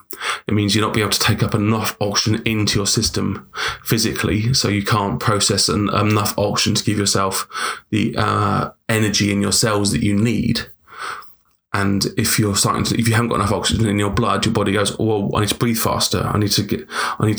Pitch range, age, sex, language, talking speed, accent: 105-115 Hz, 20-39, male, English, 215 wpm, British